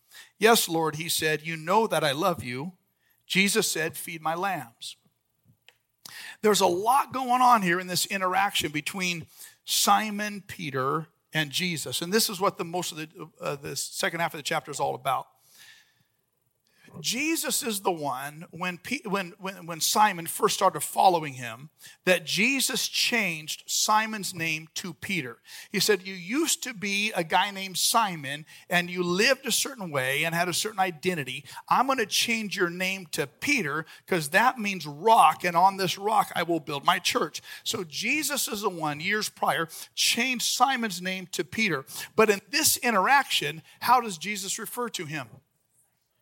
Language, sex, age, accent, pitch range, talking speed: English, male, 50-69, American, 155-210 Hz, 170 wpm